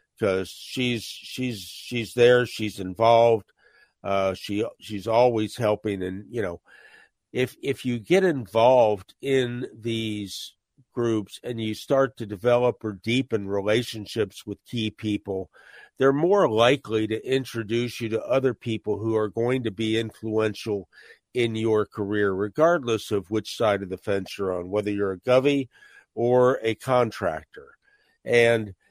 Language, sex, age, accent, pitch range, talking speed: English, male, 50-69, American, 105-125 Hz, 145 wpm